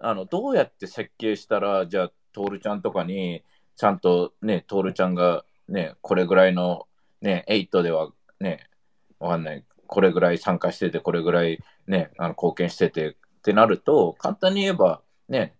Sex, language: male, Japanese